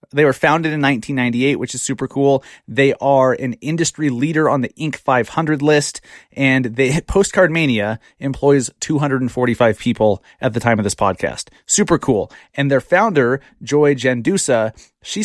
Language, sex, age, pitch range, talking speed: English, male, 30-49, 120-150 Hz, 155 wpm